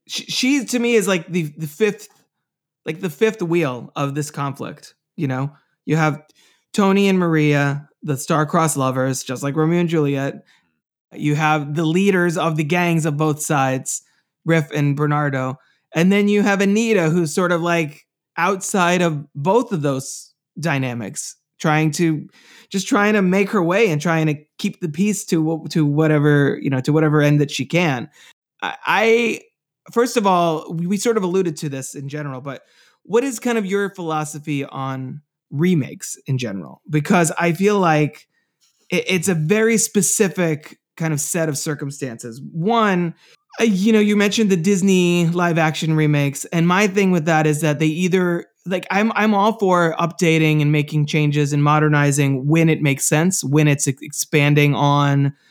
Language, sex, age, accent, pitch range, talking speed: English, male, 20-39, American, 150-190 Hz, 175 wpm